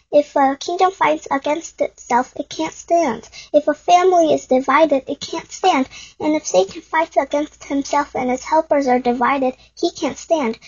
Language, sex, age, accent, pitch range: Korean, male, 10-29, American, 265-325 Hz